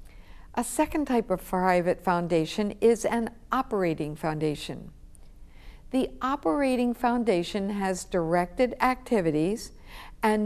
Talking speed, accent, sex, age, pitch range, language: 100 wpm, American, female, 60-79, 180-240 Hz, English